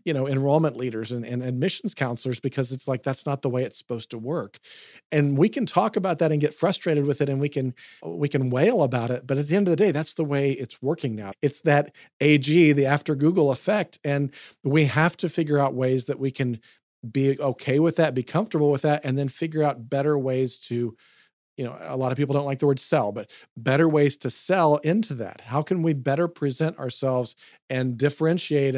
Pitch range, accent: 130-155 Hz, American